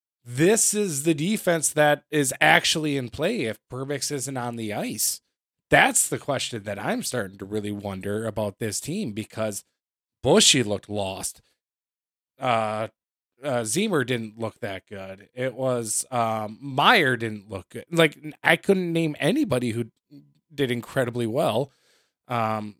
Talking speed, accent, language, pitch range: 145 wpm, American, English, 110-135 Hz